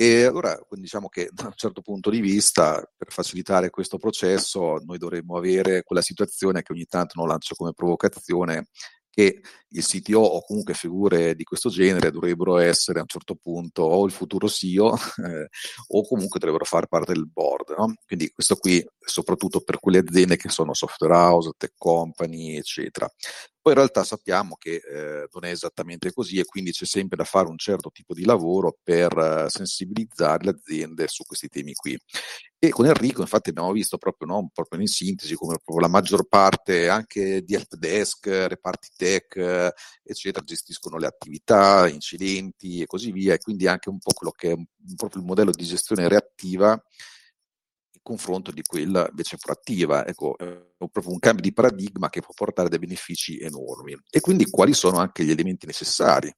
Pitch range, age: 85-105 Hz, 40-59